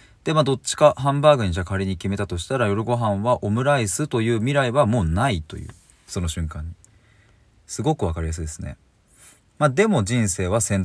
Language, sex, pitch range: Japanese, male, 90-135 Hz